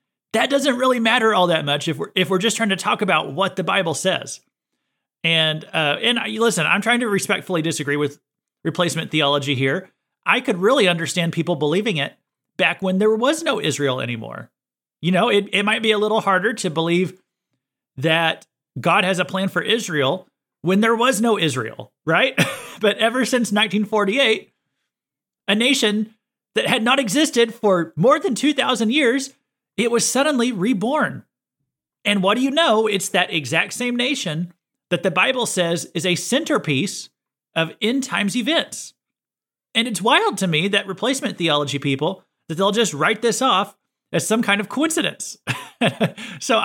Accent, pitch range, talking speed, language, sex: American, 165-230 Hz, 170 wpm, English, male